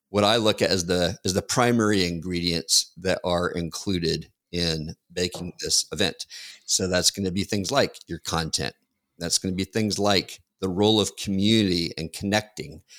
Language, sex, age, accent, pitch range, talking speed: English, male, 50-69, American, 90-105 Hz, 175 wpm